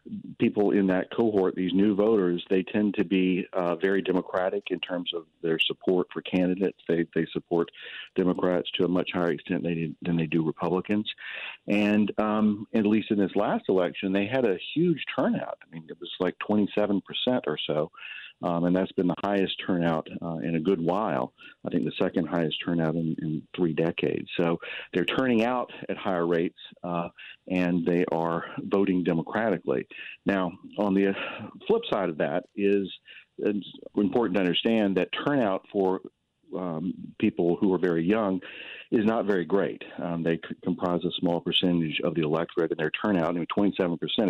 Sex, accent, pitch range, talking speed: male, American, 85-105 Hz, 175 wpm